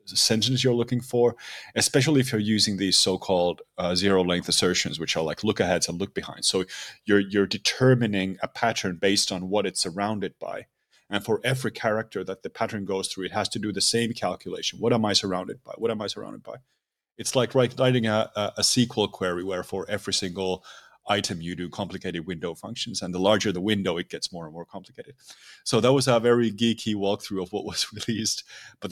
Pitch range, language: 90-115 Hz, English